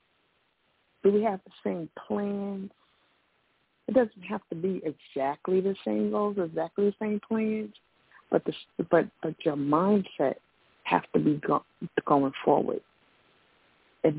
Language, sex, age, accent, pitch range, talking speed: English, female, 60-79, American, 140-200 Hz, 135 wpm